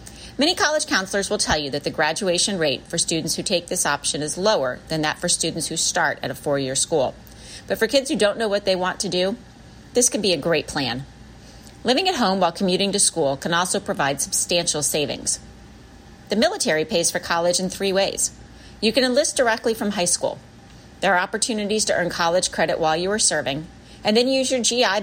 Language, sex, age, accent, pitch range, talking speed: English, female, 40-59, American, 160-220 Hz, 210 wpm